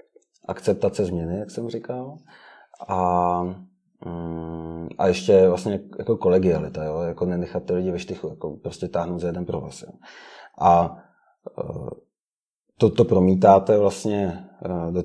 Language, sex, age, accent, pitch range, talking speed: Czech, male, 30-49, native, 90-105 Hz, 125 wpm